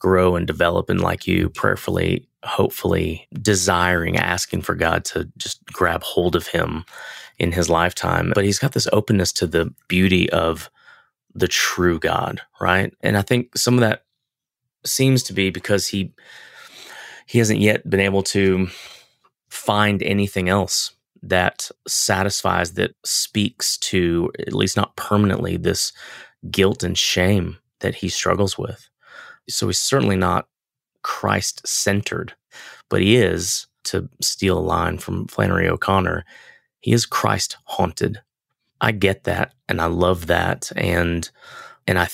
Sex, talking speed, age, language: male, 140 wpm, 20-39, English